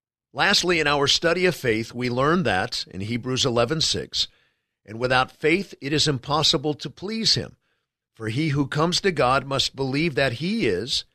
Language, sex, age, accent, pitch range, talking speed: English, male, 50-69, American, 125-165 Hz, 170 wpm